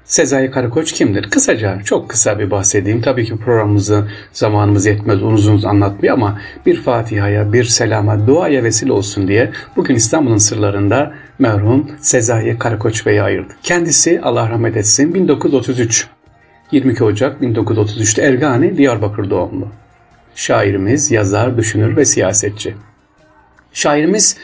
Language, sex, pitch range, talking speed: Turkish, male, 105-135 Hz, 125 wpm